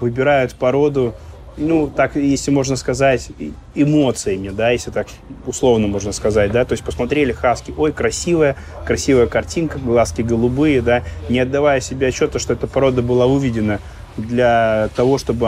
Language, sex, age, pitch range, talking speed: Russian, male, 30-49, 110-135 Hz, 145 wpm